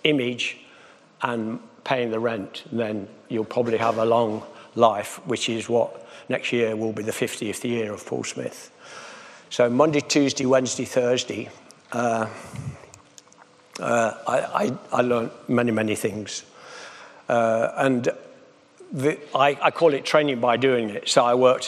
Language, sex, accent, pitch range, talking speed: English, male, British, 110-125 Hz, 140 wpm